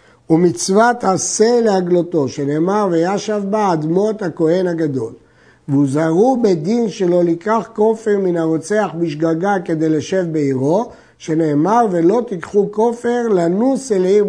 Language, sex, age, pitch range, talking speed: Hebrew, male, 50-69, 160-215 Hz, 115 wpm